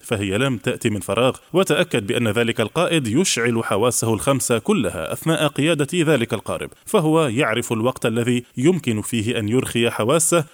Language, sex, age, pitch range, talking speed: Arabic, male, 20-39, 110-140 Hz, 150 wpm